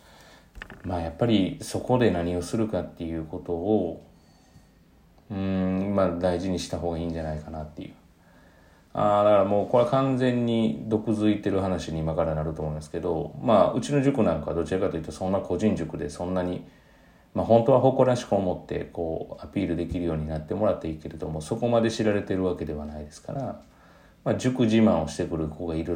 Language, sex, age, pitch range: Japanese, male, 40-59, 80-100 Hz